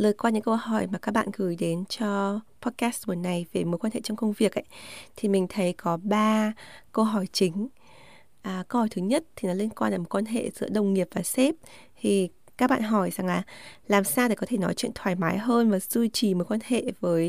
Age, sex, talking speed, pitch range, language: 20-39, female, 245 wpm, 195-240 Hz, Vietnamese